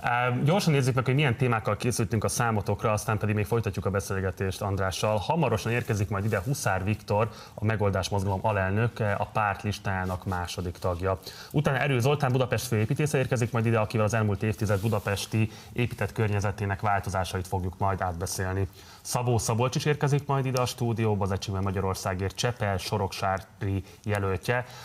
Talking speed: 150 wpm